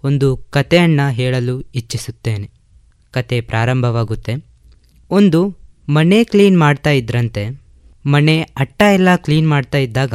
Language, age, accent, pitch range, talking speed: Kannada, 20-39, native, 115-180 Hz, 100 wpm